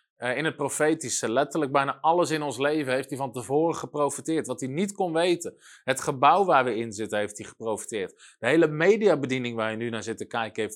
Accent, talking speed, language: Dutch, 220 wpm, Dutch